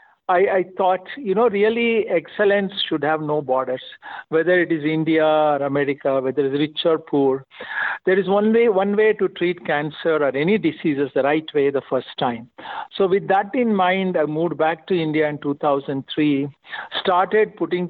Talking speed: 180 wpm